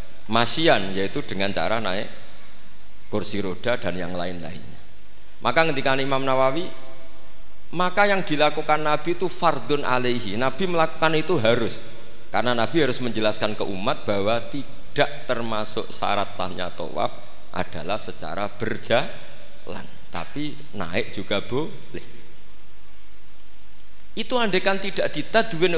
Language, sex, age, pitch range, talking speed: Indonesian, male, 50-69, 100-150 Hz, 110 wpm